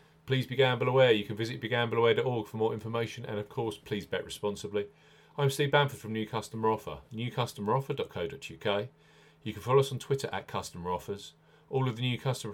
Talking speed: 185 wpm